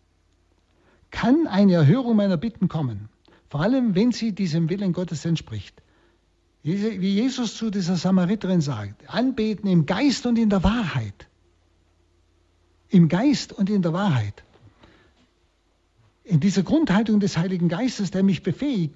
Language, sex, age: German, male, 60-79